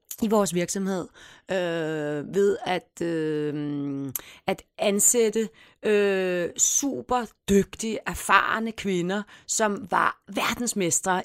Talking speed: 75 wpm